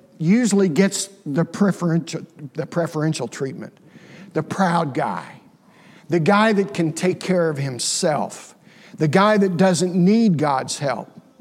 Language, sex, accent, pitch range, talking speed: English, male, American, 155-195 Hz, 125 wpm